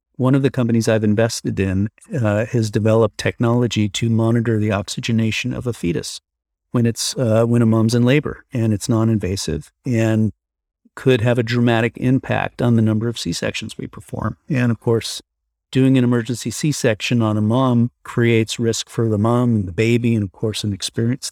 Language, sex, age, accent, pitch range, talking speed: English, male, 50-69, American, 110-130 Hz, 180 wpm